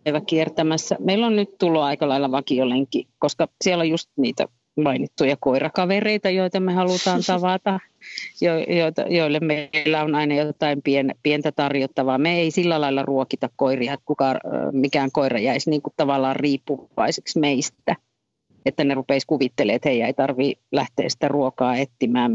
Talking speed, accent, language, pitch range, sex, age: 155 wpm, native, Finnish, 140-180 Hz, female, 40-59